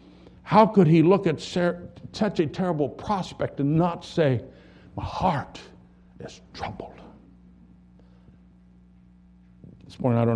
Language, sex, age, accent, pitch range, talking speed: English, male, 60-79, American, 95-135 Hz, 115 wpm